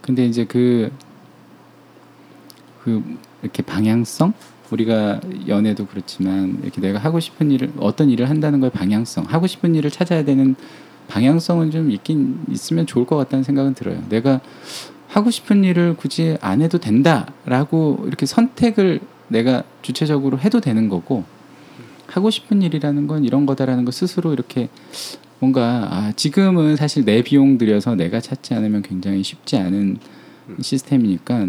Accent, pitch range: native, 105-150 Hz